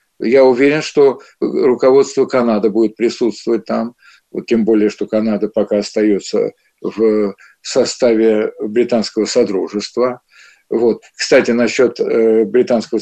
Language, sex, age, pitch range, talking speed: Russian, male, 60-79, 120-160 Hz, 105 wpm